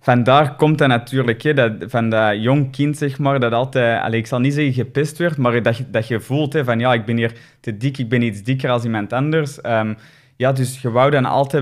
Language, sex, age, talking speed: Dutch, male, 20-39, 240 wpm